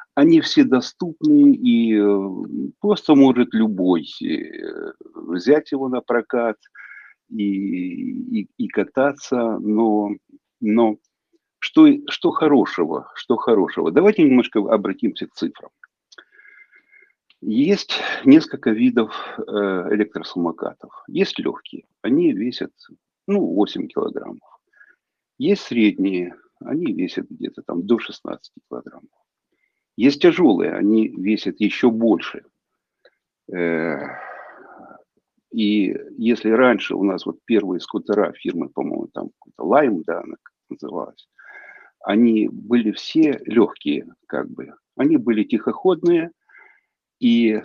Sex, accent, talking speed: male, native, 95 wpm